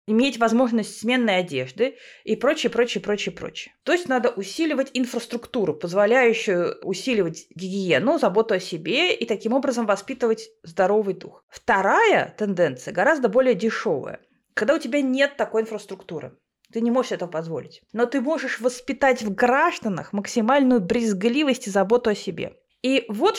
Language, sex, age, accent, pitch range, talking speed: Russian, female, 20-39, native, 195-255 Hz, 145 wpm